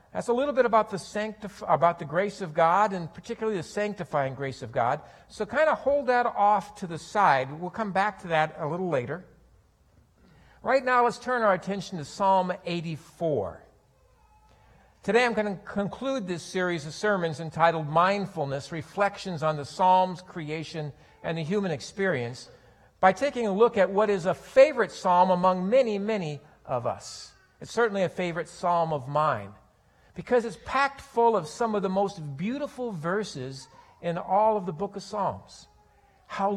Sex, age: male, 50-69